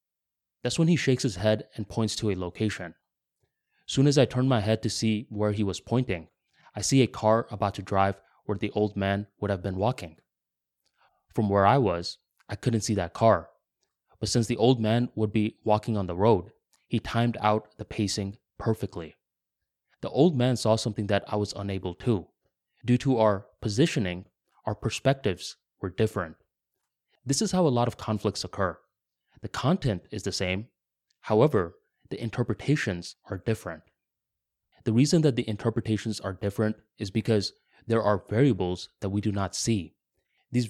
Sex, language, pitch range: male, English, 95-120 Hz